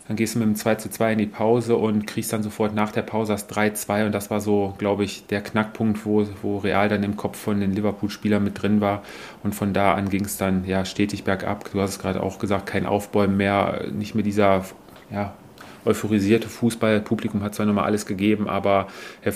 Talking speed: 215 wpm